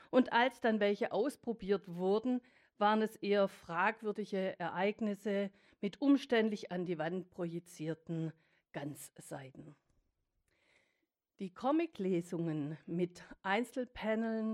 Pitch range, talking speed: 185-240 Hz, 90 wpm